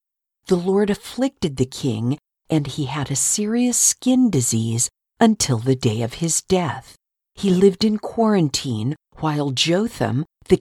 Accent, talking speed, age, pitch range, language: American, 140 wpm, 50-69, 130-195 Hz, English